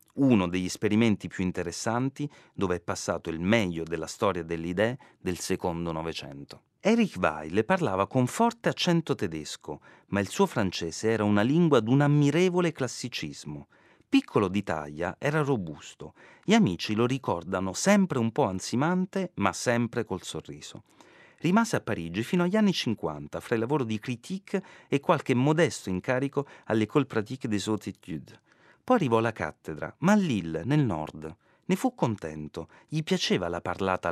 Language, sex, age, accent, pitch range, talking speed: Italian, male, 40-59, native, 85-140 Hz, 155 wpm